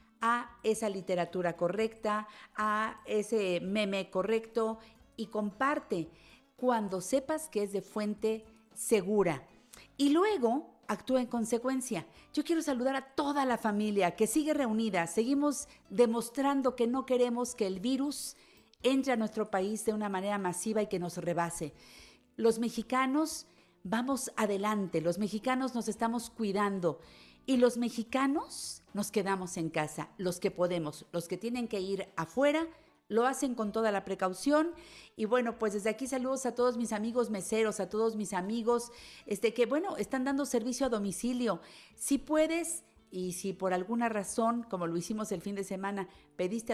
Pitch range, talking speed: 195-250 Hz, 155 wpm